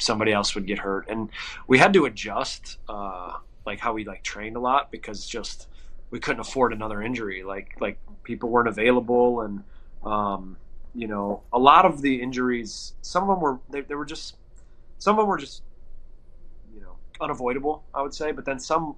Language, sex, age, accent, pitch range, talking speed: English, male, 20-39, American, 105-125 Hz, 195 wpm